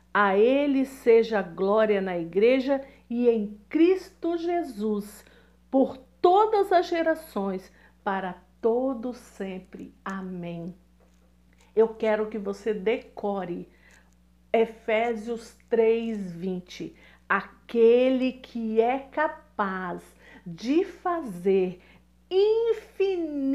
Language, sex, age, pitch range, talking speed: Portuguese, female, 50-69, 205-270 Hz, 85 wpm